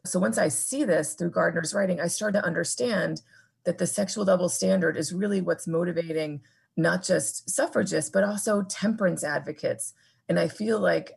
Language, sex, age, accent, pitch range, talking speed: English, female, 30-49, American, 160-195 Hz, 170 wpm